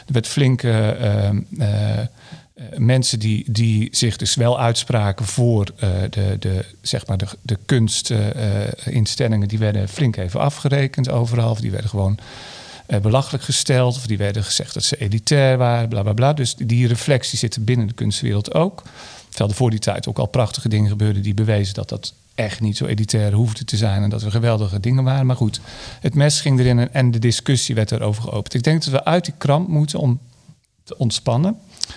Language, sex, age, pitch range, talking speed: Dutch, male, 40-59, 110-130 Hz, 195 wpm